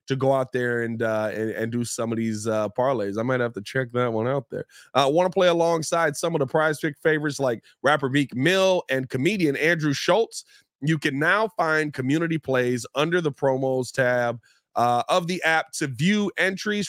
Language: English